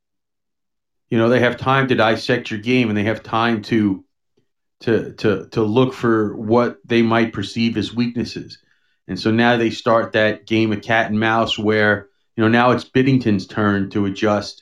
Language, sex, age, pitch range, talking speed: English, male, 40-59, 105-120 Hz, 185 wpm